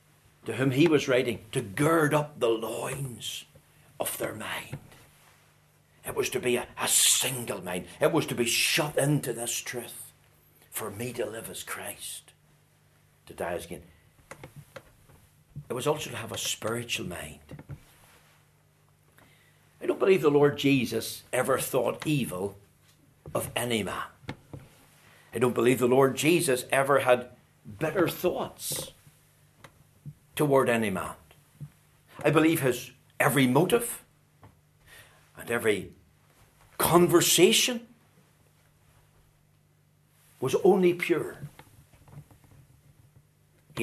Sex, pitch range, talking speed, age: male, 120-145 Hz, 115 wpm, 60-79